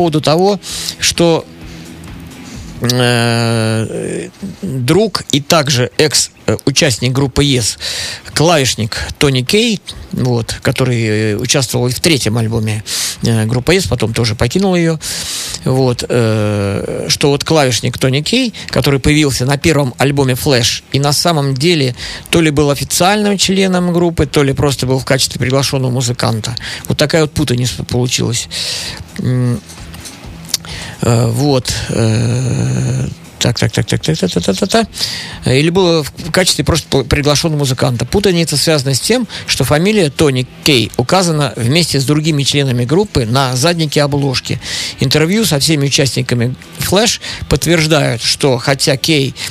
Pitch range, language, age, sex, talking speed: 115-155 Hz, Russian, 50-69, male, 130 wpm